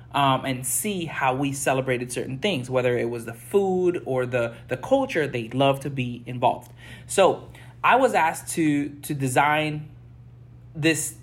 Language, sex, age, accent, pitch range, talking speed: English, male, 30-49, American, 125-155 Hz, 160 wpm